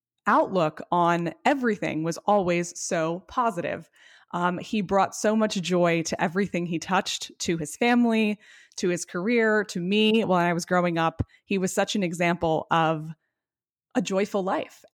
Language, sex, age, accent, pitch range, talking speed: English, female, 20-39, American, 165-205 Hz, 155 wpm